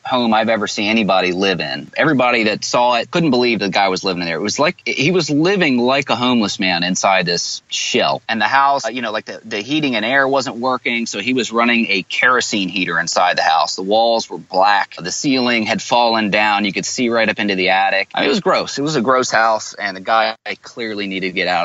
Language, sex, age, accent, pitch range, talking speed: English, male, 30-49, American, 95-120 Hz, 250 wpm